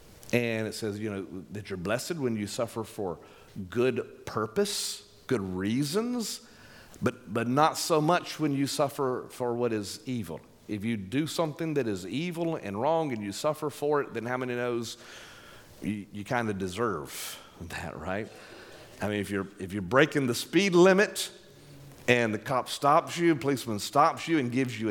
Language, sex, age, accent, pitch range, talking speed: English, male, 40-59, American, 110-145 Hz, 180 wpm